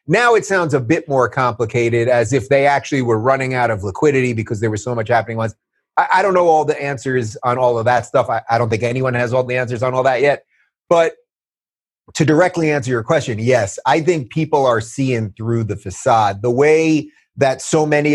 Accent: American